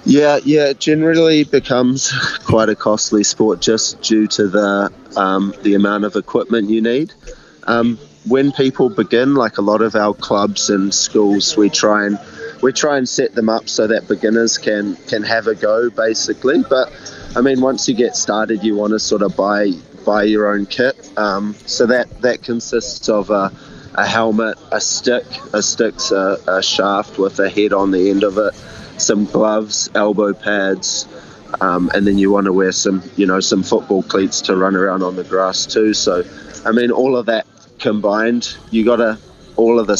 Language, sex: English, male